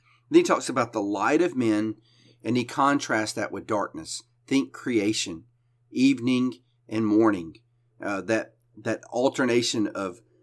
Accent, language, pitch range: American, English, 115-135 Hz